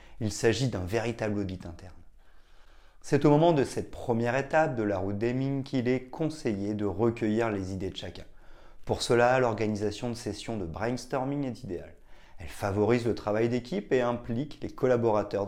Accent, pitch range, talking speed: French, 100-125 Hz, 170 wpm